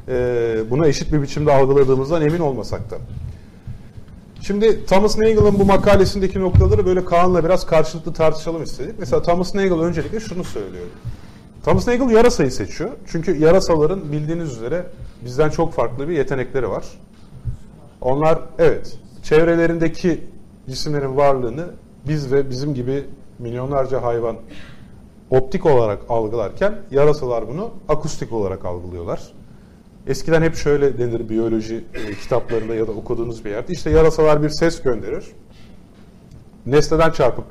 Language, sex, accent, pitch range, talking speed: Turkish, male, native, 125-170 Hz, 125 wpm